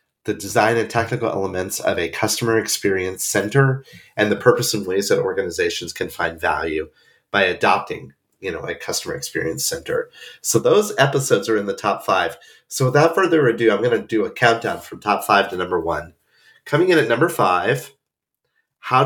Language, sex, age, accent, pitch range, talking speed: English, male, 30-49, American, 110-165 Hz, 185 wpm